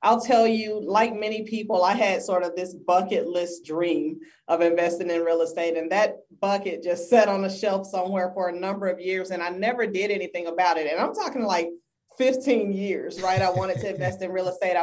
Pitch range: 180-225 Hz